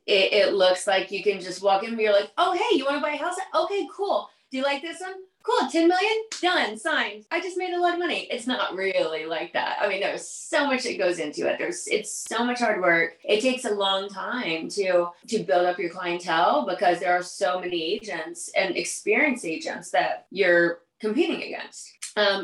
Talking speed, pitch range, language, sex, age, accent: 225 wpm, 185-265 Hz, English, female, 30-49, American